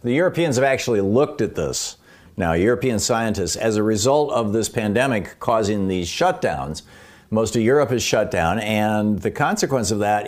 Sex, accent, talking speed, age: male, American, 175 wpm, 50-69